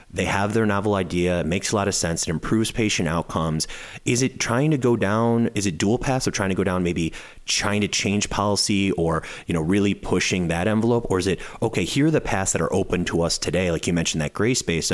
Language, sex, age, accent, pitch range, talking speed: English, male, 30-49, American, 85-100 Hz, 250 wpm